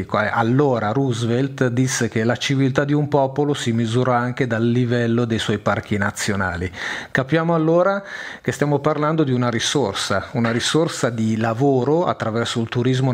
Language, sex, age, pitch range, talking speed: Italian, male, 40-59, 115-145 Hz, 150 wpm